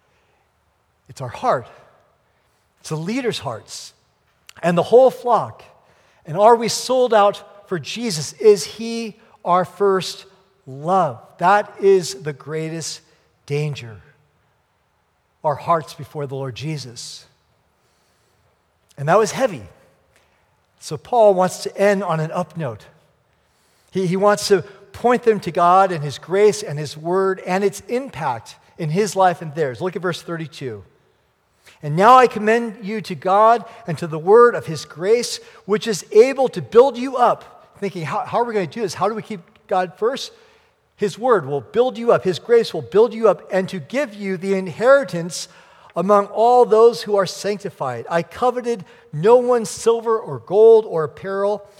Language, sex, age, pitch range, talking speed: English, male, 50-69, 170-230 Hz, 165 wpm